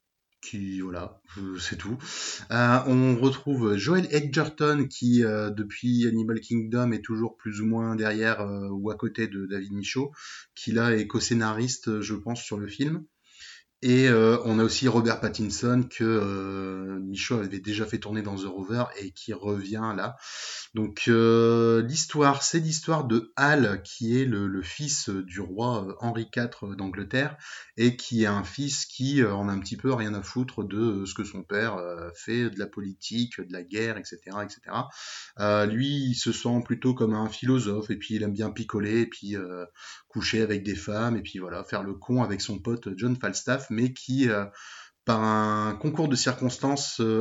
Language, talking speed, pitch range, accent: French, 180 wpm, 100-125 Hz, French